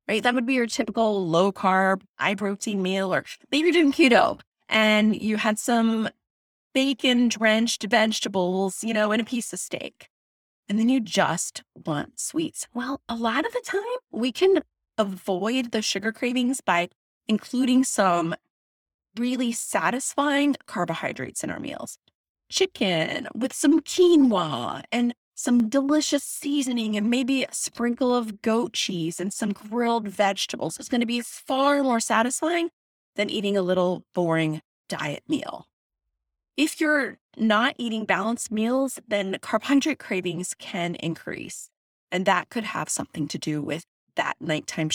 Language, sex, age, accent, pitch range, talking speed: English, female, 30-49, American, 195-265 Hz, 145 wpm